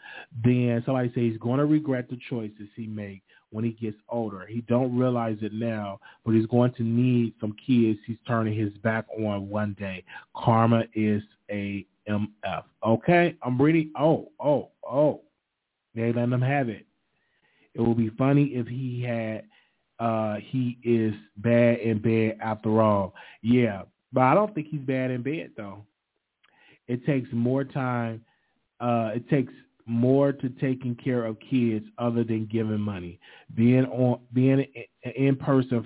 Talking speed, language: 160 wpm, English